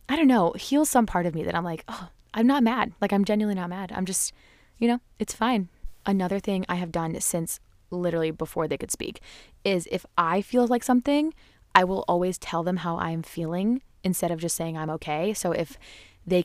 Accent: American